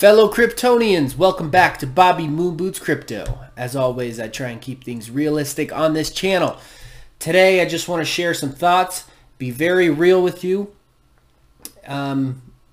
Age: 20-39